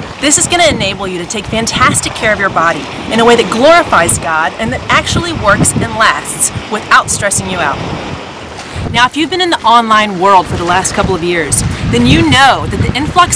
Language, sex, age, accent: English, female, 30-49, American